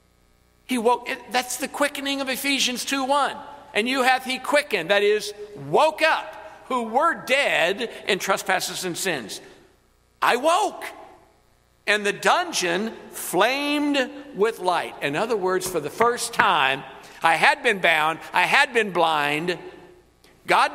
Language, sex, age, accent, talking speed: English, male, 50-69, American, 140 wpm